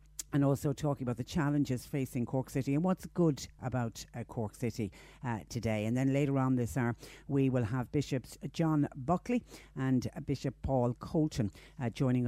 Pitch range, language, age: 115-140 Hz, English, 60-79